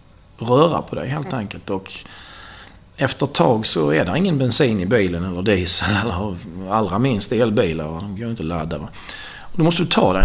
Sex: male